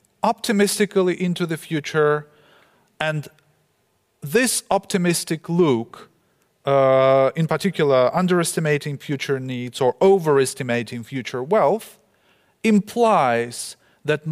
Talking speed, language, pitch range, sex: 85 wpm, Dutch, 135-175 Hz, male